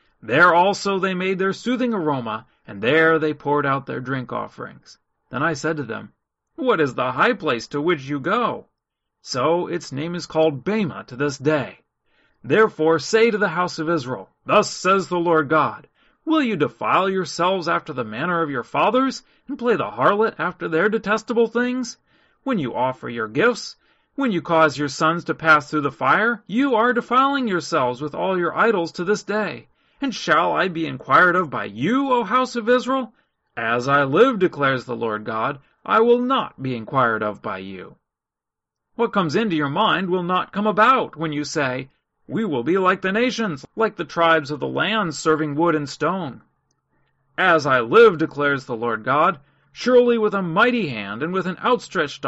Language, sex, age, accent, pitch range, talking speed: English, male, 40-59, American, 145-215 Hz, 190 wpm